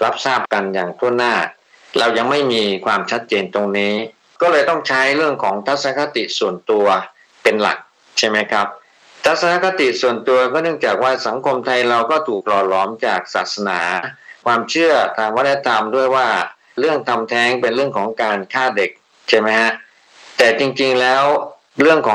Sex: male